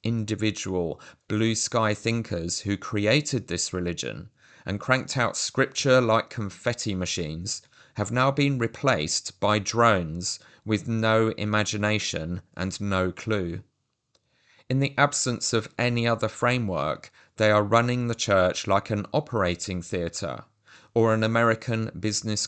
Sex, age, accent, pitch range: male, 30-49, British, 100-120 Hz